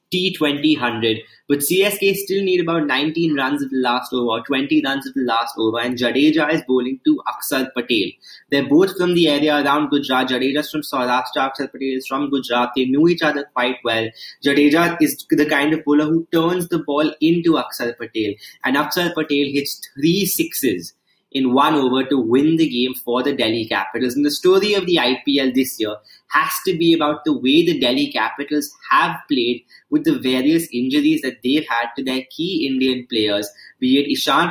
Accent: Indian